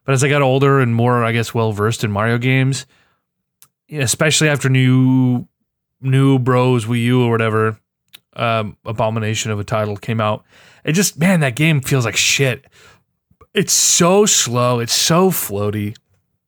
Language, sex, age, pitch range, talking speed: English, male, 20-39, 110-140 Hz, 155 wpm